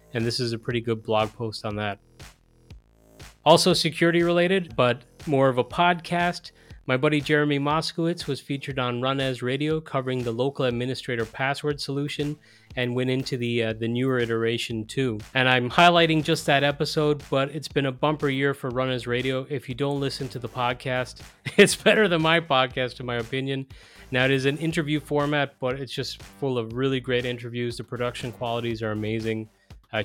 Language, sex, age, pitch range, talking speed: English, male, 30-49, 120-150 Hz, 190 wpm